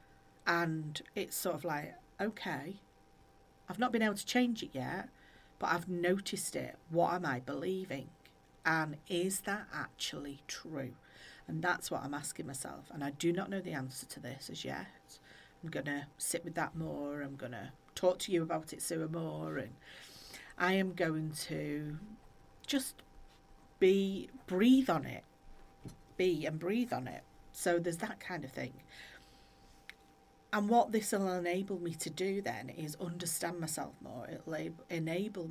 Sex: female